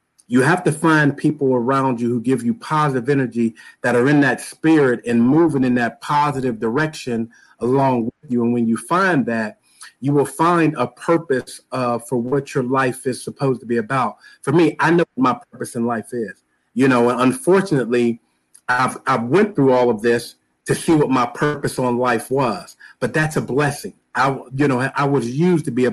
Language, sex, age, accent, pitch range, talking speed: English, male, 40-59, American, 125-150 Hz, 205 wpm